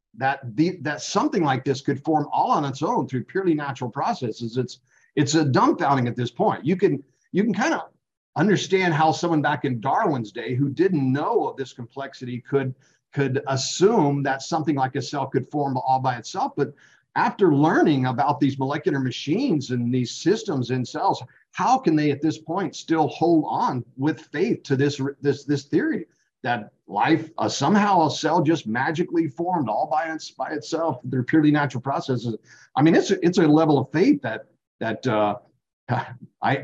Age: 50-69